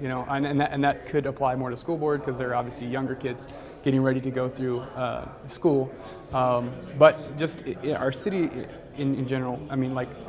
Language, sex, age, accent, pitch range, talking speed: English, male, 20-39, American, 125-140 Hz, 215 wpm